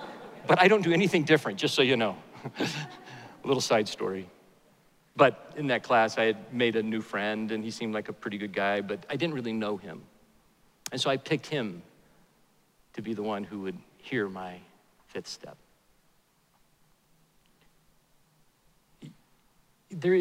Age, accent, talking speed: 50-69, American, 160 wpm